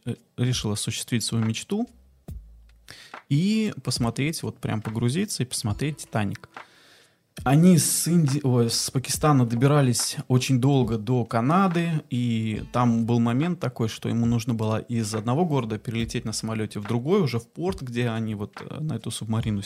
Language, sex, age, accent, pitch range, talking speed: Russian, male, 20-39, native, 115-145 Hz, 145 wpm